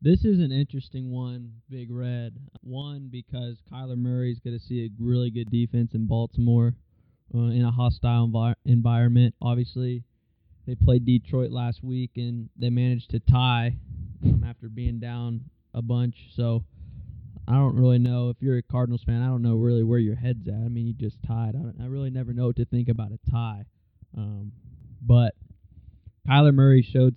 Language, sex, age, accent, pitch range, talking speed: English, male, 20-39, American, 115-125 Hz, 180 wpm